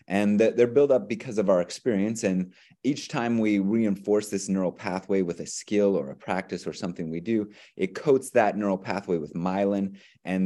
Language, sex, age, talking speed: English, male, 30-49, 195 wpm